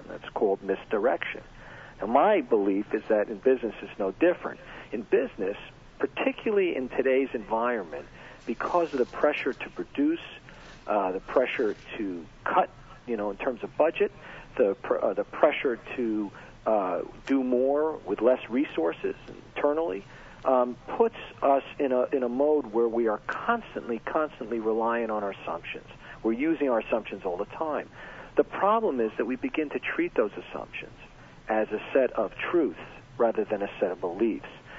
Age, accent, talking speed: 50-69, American, 160 wpm